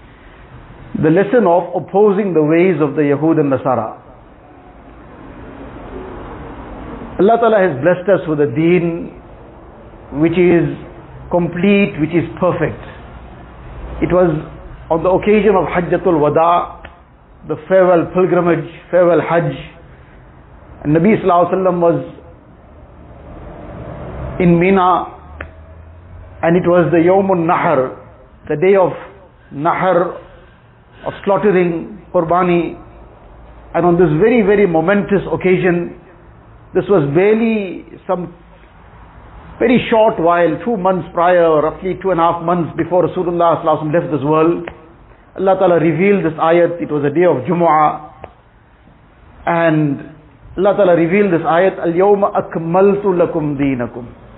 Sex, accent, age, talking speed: male, Indian, 50-69, 120 wpm